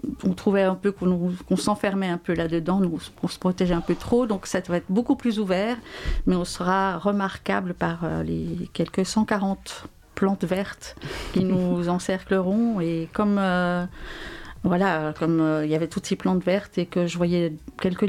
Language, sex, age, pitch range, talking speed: French, female, 40-59, 165-195 Hz, 180 wpm